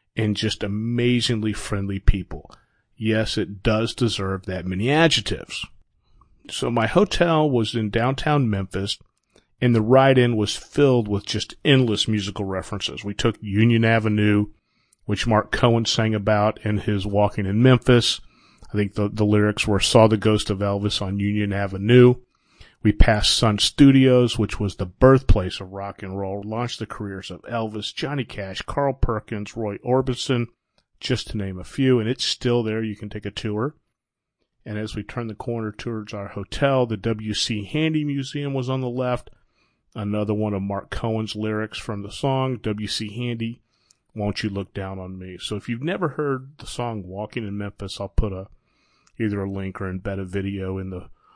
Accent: American